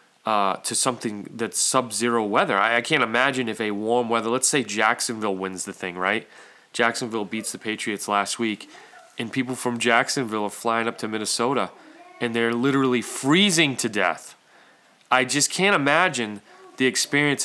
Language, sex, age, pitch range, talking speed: English, male, 30-49, 110-155 Hz, 165 wpm